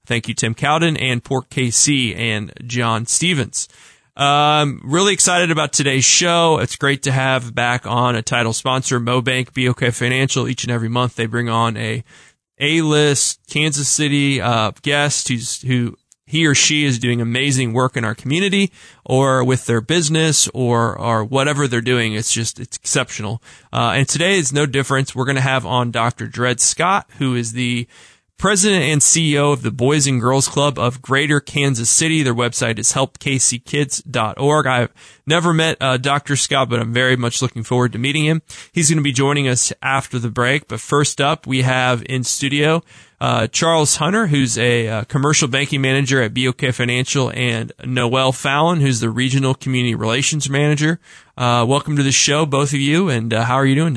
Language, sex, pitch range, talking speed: English, male, 120-145 Hz, 185 wpm